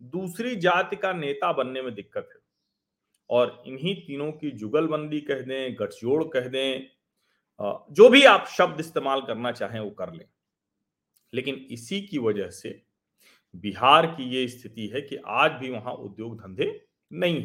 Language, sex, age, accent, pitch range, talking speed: Hindi, male, 40-59, native, 125-190 Hz, 155 wpm